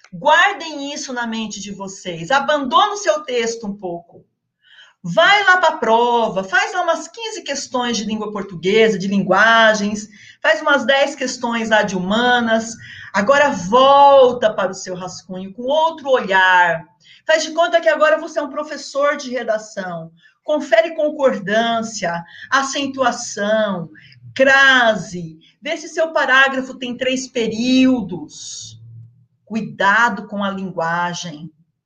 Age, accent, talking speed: 40-59, Brazilian, 130 wpm